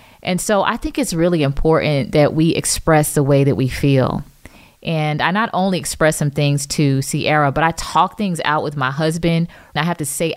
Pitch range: 145-170 Hz